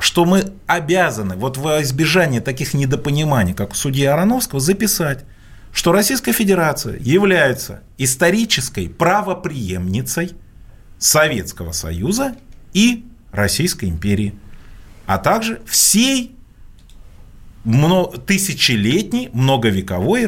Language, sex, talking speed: Russian, male, 90 wpm